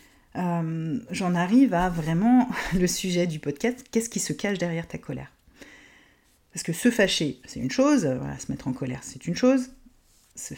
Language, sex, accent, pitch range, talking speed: French, female, French, 165-230 Hz, 175 wpm